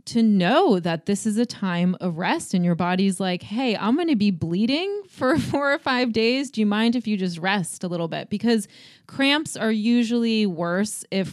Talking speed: 210 wpm